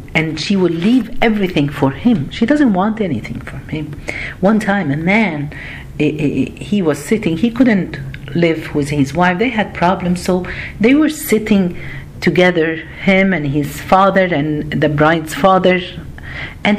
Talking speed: 155 wpm